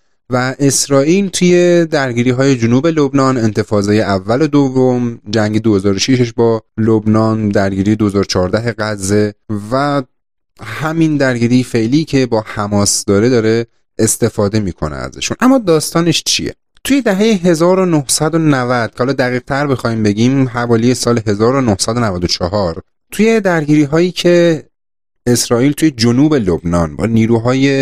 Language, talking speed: Persian, 110 wpm